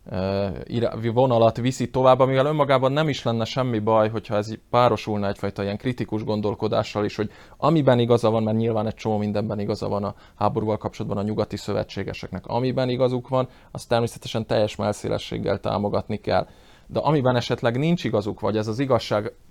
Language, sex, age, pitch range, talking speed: Hungarian, male, 20-39, 105-120 Hz, 165 wpm